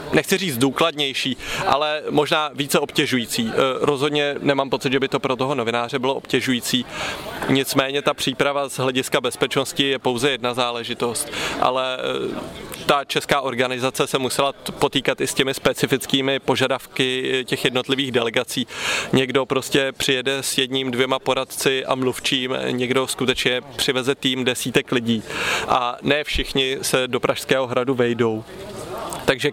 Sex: male